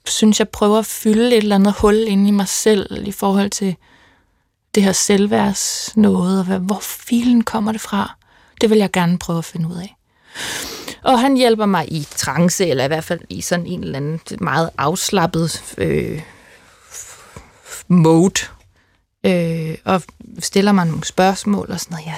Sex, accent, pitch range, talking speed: female, native, 170-220 Hz, 170 wpm